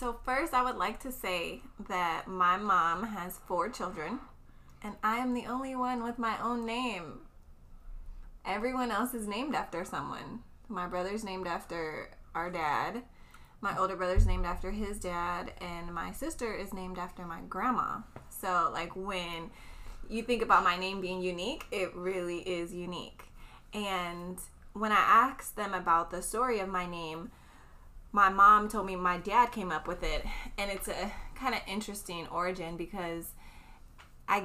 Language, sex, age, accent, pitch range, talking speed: English, female, 20-39, American, 175-225 Hz, 165 wpm